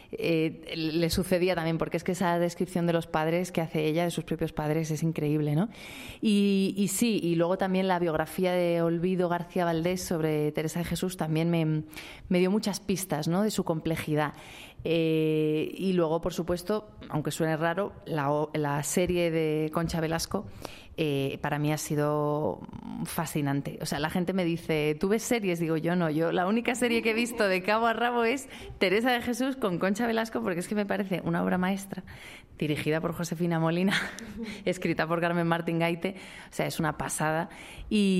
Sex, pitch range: female, 165-200 Hz